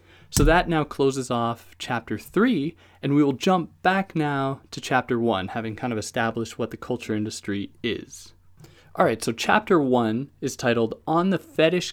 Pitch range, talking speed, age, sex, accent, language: 110-145 Hz, 175 wpm, 20-39, male, American, English